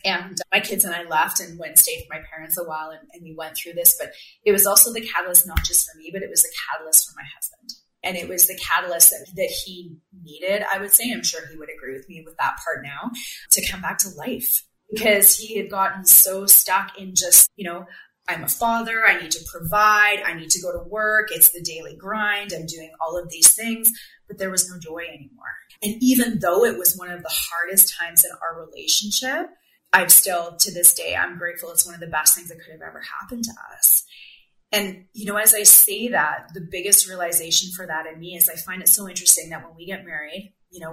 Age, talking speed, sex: 30-49, 245 wpm, female